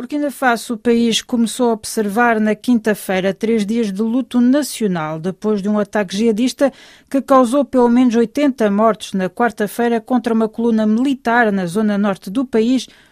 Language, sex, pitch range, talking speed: Portuguese, female, 200-245 Hz, 170 wpm